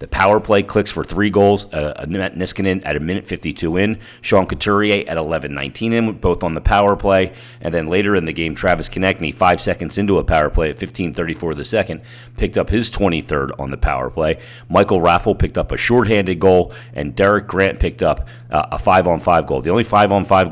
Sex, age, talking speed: male, 40-59, 205 wpm